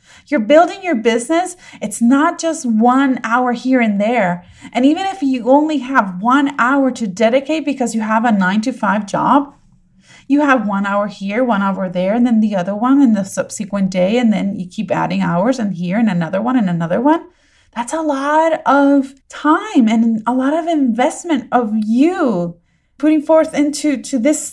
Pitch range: 205-290 Hz